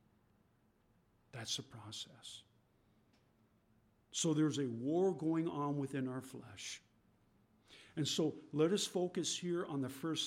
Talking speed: 125 wpm